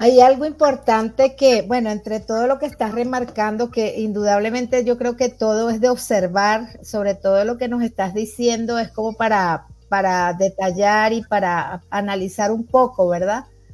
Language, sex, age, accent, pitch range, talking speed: Spanish, female, 40-59, American, 205-250 Hz, 165 wpm